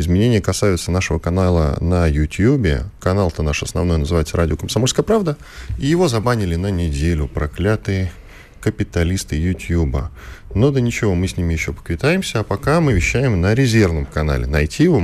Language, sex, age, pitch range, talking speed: Russian, male, 10-29, 80-120 Hz, 150 wpm